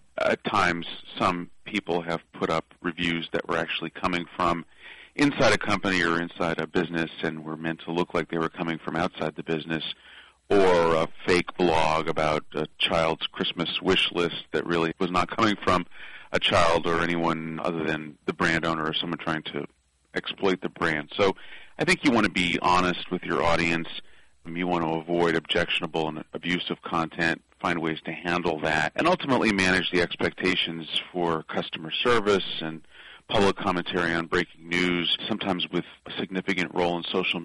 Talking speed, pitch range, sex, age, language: 175 wpm, 80-90 Hz, male, 40-59, English